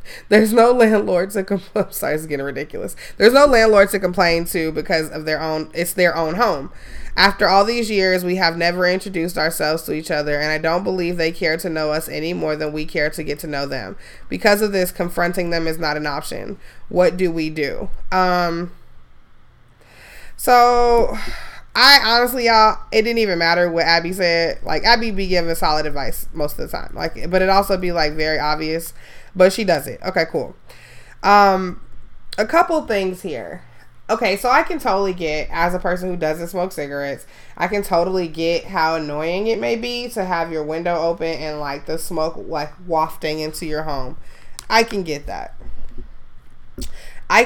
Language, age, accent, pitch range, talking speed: English, 20-39, American, 160-195 Hz, 190 wpm